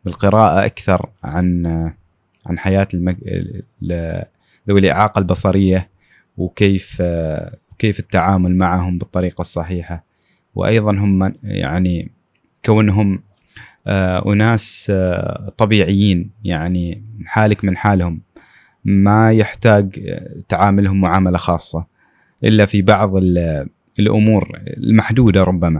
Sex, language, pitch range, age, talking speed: male, Arabic, 95-110 Hz, 20-39, 90 wpm